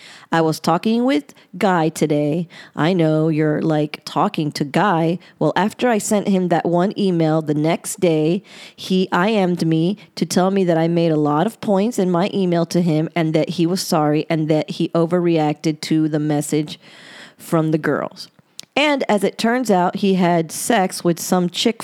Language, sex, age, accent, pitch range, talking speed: English, female, 30-49, American, 160-195 Hz, 185 wpm